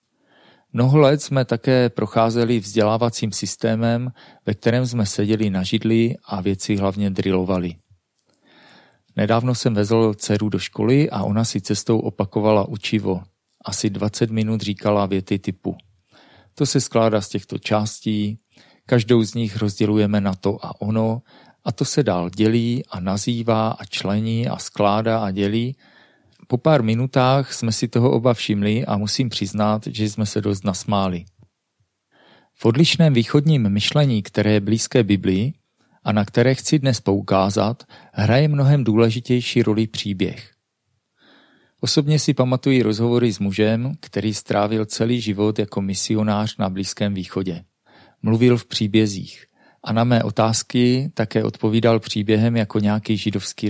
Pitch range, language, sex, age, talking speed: 105-120 Hz, Czech, male, 40-59, 140 wpm